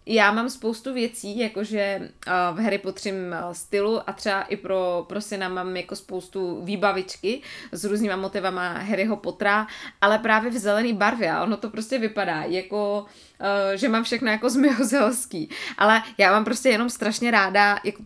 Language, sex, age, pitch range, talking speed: Czech, female, 20-39, 180-220 Hz, 165 wpm